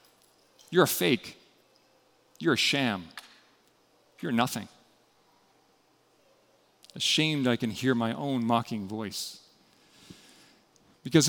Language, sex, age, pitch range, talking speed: English, male, 40-59, 140-195 Hz, 90 wpm